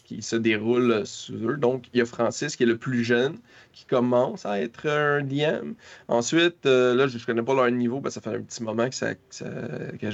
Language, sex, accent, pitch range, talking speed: French, male, Canadian, 115-130 Hz, 235 wpm